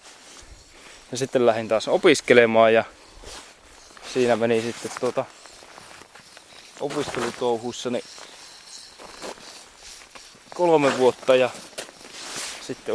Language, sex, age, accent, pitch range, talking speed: Finnish, male, 20-39, native, 110-130 Hz, 65 wpm